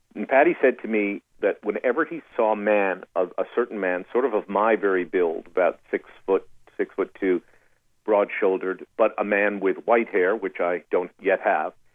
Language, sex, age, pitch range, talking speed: English, male, 50-69, 105-135 Hz, 190 wpm